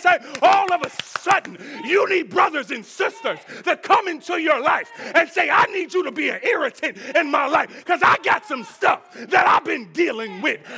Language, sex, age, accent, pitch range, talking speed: English, male, 30-49, American, 285-360 Hz, 205 wpm